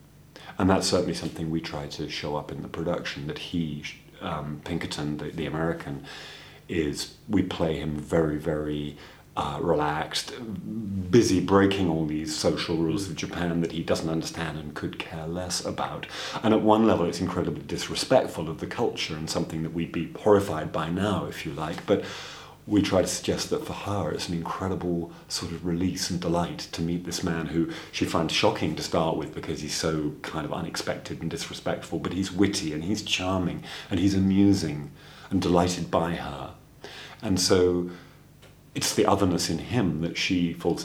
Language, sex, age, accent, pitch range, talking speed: English, male, 40-59, British, 80-95 Hz, 180 wpm